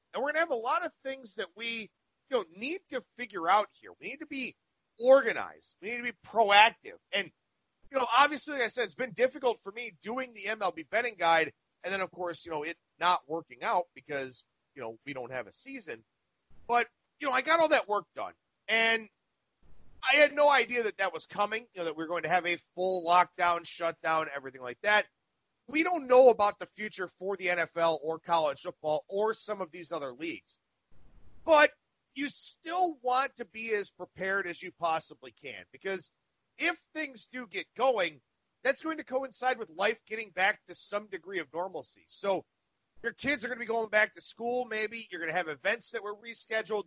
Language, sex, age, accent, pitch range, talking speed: English, male, 40-59, American, 175-255 Hz, 210 wpm